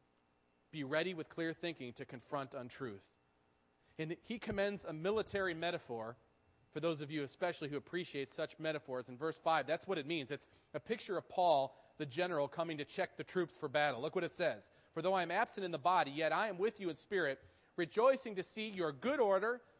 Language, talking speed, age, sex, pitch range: English, 210 wpm, 40-59, male, 150-200 Hz